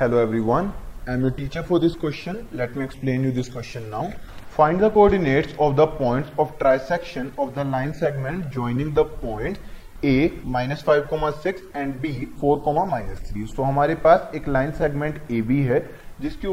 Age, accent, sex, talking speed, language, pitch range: 20-39, Indian, male, 155 wpm, English, 135-175 Hz